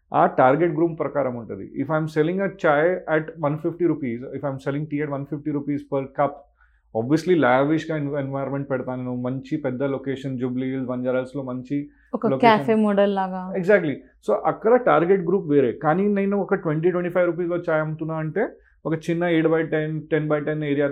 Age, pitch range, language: 30-49, 140-190 Hz, Telugu